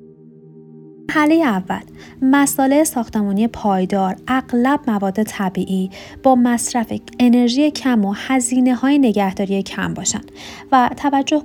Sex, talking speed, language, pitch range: female, 105 wpm, Persian, 195-245 Hz